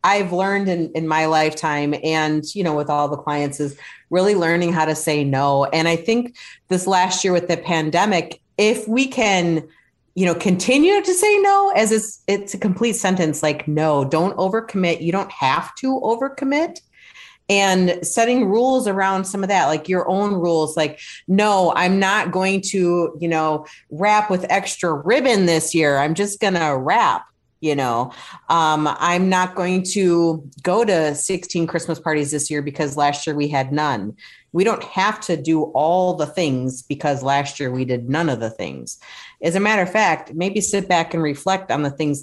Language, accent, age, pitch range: English, American, 30-49, 150-195 Hz